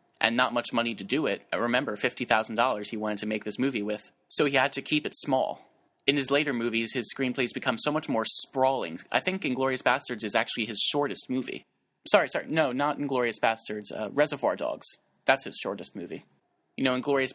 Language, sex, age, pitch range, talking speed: English, male, 30-49, 115-140 Hz, 210 wpm